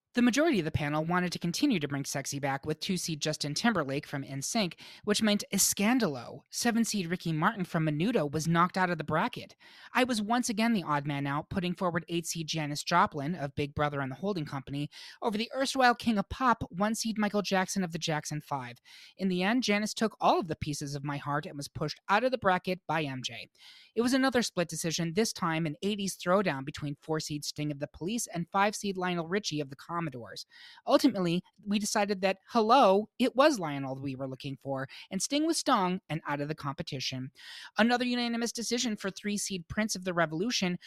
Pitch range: 150-220 Hz